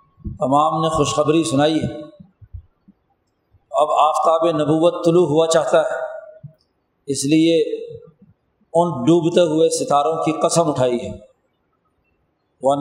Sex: male